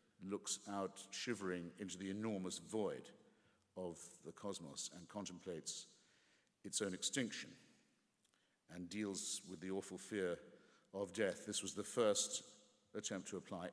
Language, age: English, 50-69